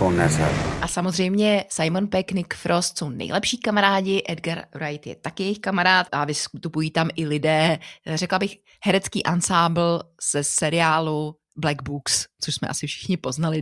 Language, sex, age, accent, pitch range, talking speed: Czech, female, 30-49, native, 155-200 Hz, 145 wpm